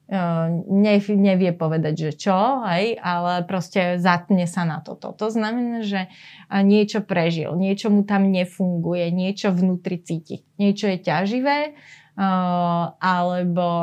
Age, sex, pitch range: 30-49, female, 175-205 Hz